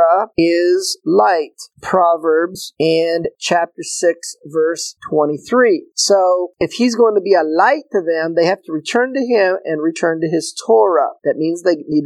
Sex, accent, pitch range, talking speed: male, American, 155-195 Hz, 165 wpm